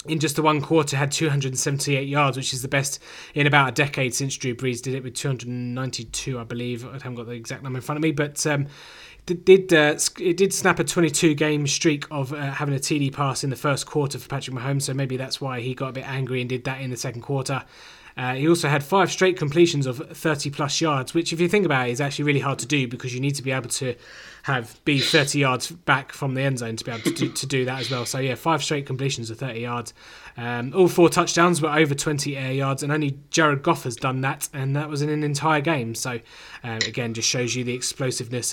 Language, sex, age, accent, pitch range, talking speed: English, male, 20-39, British, 130-155 Hz, 250 wpm